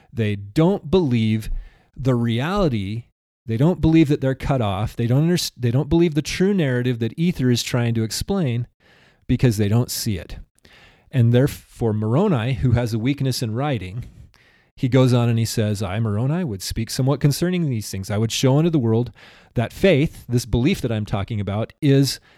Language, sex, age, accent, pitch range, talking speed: English, male, 30-49, American, 110-140 Hz, 190 wpm